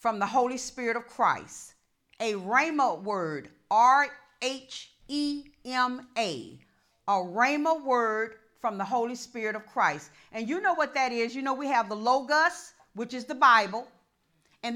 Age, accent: 50-69, American